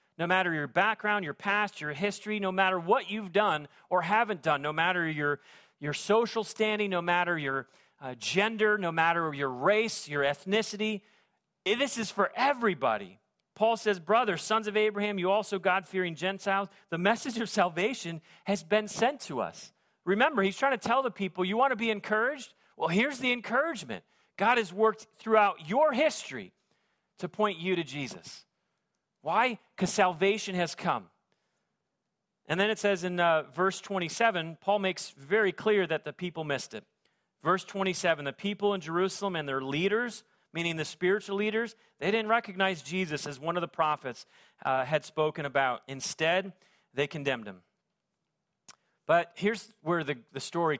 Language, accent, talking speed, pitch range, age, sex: English, American, 170 wpm, 155-210 Hz, 40-59, male